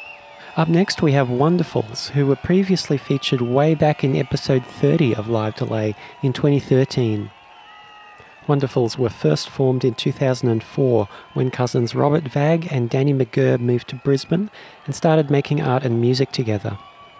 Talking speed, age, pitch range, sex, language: 145 wpm, 30-49, 120-145 Hz, male, English